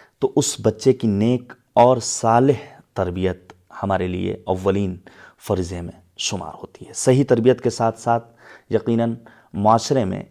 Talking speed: 140 wpm